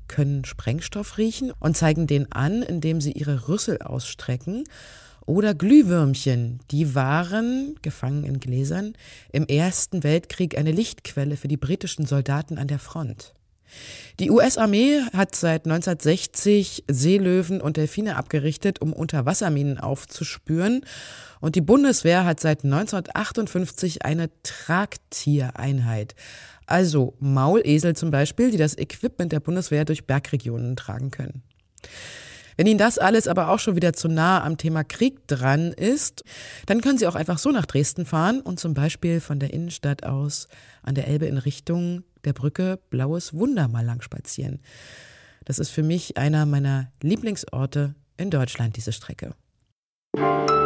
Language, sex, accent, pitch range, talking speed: German, female, German, 140-185 Hz, 140 wpm